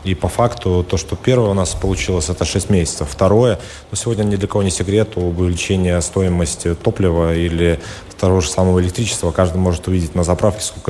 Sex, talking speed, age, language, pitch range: male, 185 wpm, 20-39, Russian, 85-100 Hz